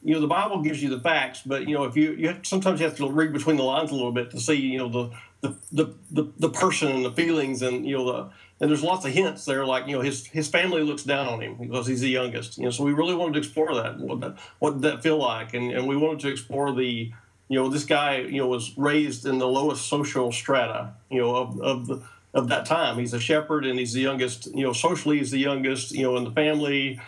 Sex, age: male, 50-69